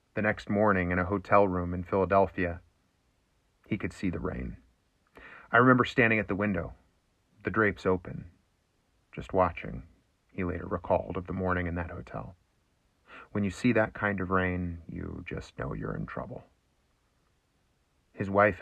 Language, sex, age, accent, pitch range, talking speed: English, male, 30-49, American, 90-105 Hz, 160 wpm